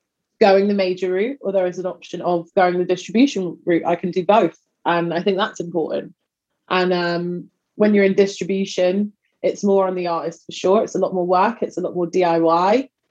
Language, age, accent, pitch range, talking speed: English, 20-39, British, 180-205 Hz, 210 wpm